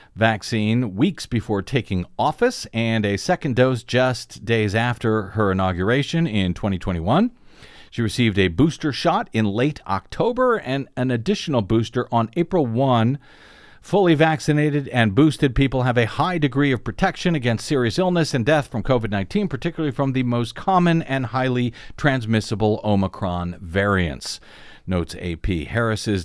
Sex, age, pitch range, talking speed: male, 50-69, 105-145 Hz, 140 wpm